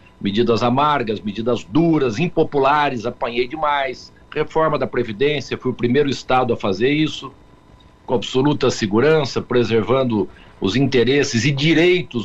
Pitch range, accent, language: 120-160 Hz, Brazilian, Portuguese